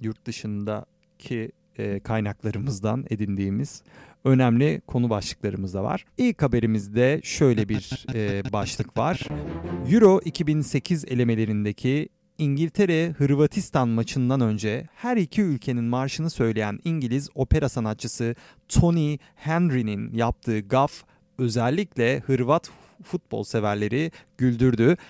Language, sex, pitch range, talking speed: Turkish, male, 115-160 Hz, 90 wpm